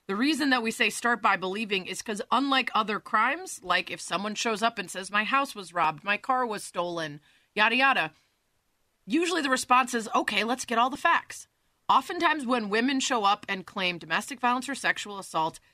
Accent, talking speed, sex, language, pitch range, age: American, 200 wpm, female, English, 195-255 Hz, 30-49